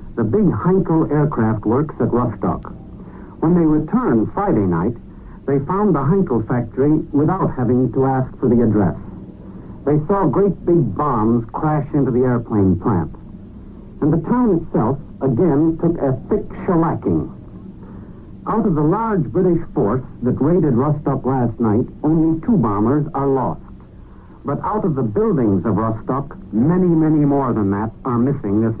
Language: English